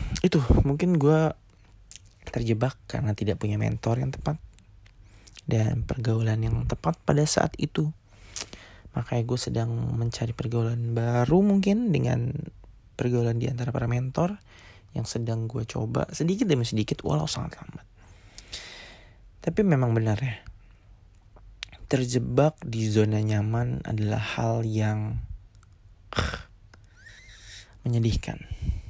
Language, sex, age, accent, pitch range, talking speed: Indonesian, male, 20-39, native, 100-125 Hz, 110 wpm